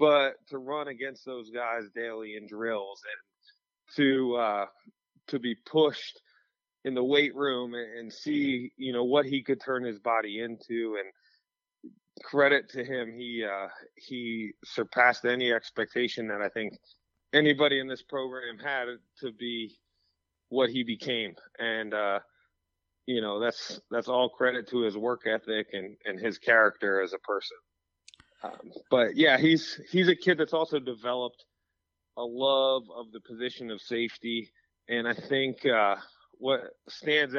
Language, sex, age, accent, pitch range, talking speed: English, male, 30-49, American, 115-140 Hz, 150 wpm